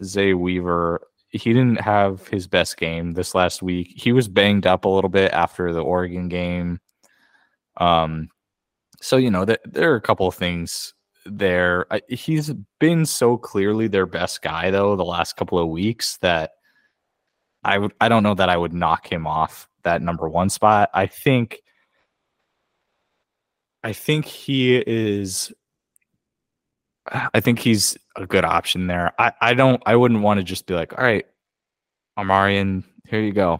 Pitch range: 85-110 Hz